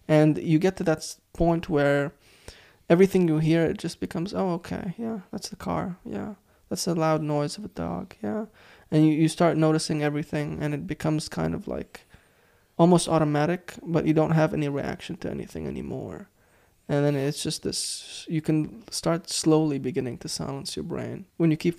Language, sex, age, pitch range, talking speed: English, male, 20-39, 145-170 Hz, 185 wpm